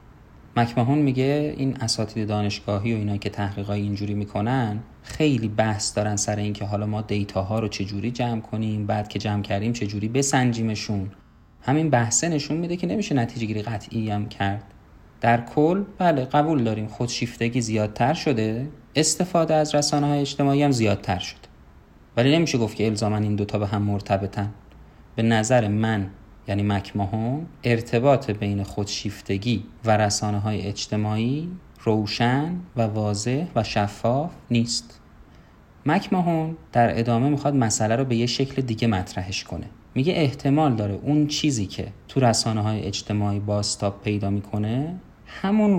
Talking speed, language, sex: 150 wpm, Persian, male